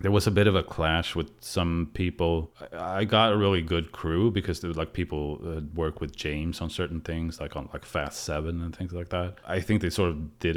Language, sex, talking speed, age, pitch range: English, male, 235 wpm, 30-49, 85-110 Hz